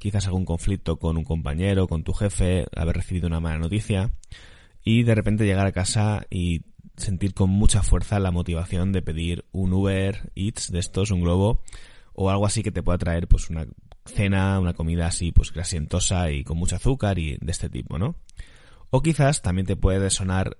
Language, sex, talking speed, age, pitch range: Spanish, male, 190 wpm, 20-39, 85-105 Hz